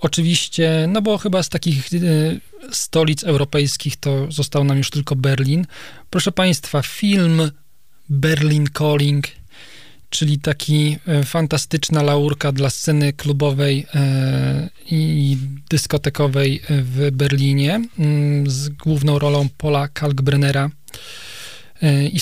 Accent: native